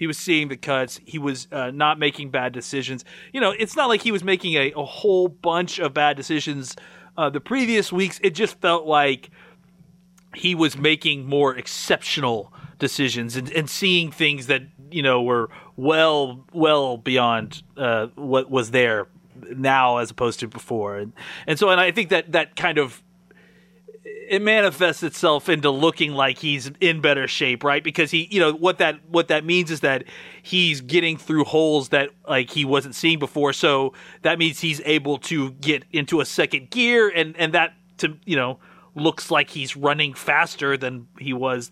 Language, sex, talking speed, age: English, male, 185 wpm, 30-49